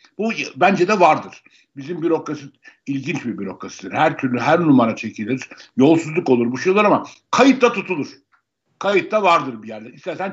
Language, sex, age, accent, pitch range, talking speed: Turkish, male, 60-79, native, 140-215 Hz, 150 wpm